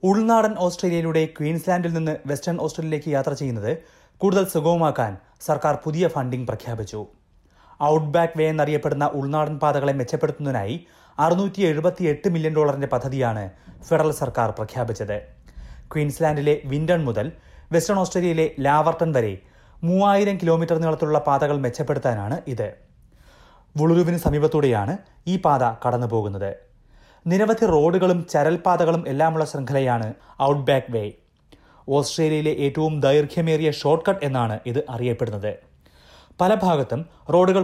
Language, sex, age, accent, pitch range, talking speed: Malayalam, male, 30-49, native, 125-165 Hz, 105 wpm